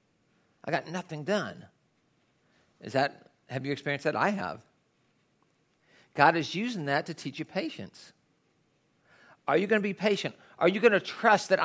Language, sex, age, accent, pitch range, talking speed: English, male, 50-69, American, 150-200 Hz, 155 wpm